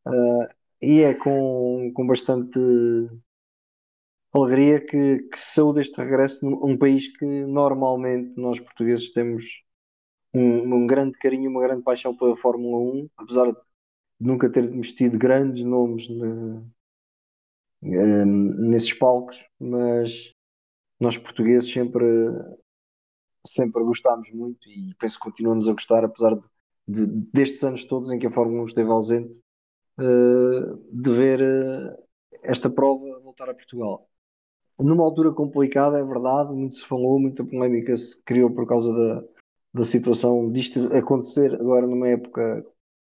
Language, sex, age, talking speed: Portuguese, male, 20-39, 130 wpm